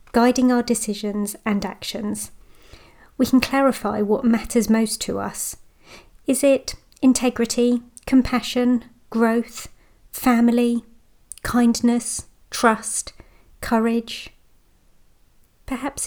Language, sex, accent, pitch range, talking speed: English, female, British, 210-245 Hz, 85 wpm